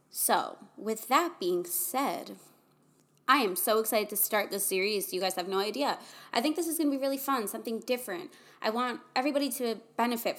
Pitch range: 210-285 Hz